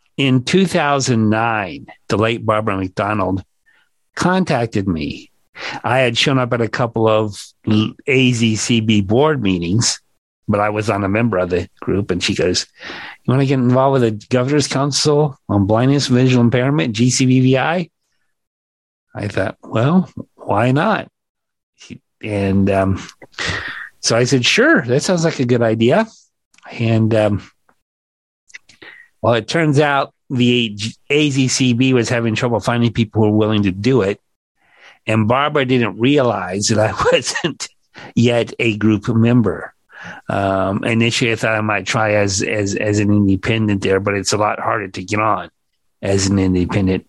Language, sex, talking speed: English, male, 150 wpm